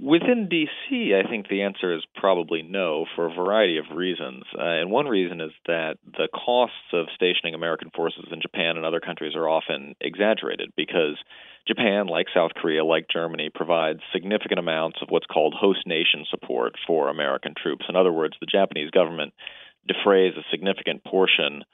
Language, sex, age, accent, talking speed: English, male, 40-59, American, 175 wpm